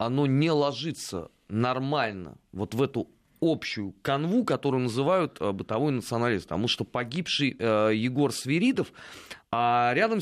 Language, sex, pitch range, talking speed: Russian, male, 120-160 Hz, 115 wpm